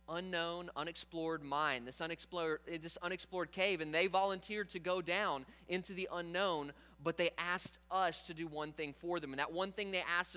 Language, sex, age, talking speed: English, male, 30-49, 185 wpm